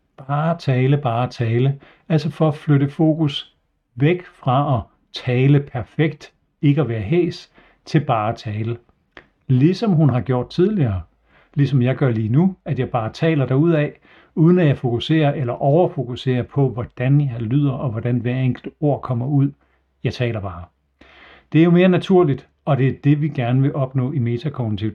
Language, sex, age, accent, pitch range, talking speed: Danish, male, 60-79, native, 125-155 Hz, 170 wpm